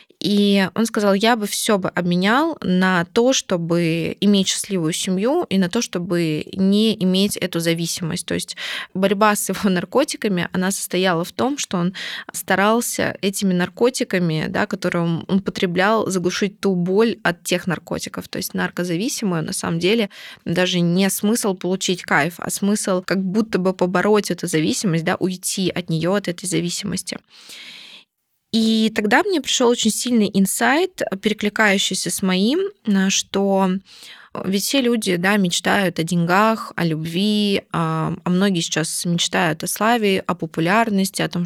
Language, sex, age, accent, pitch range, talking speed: Russian, female, 20-39, native, 180-215 Hz, 150 wpm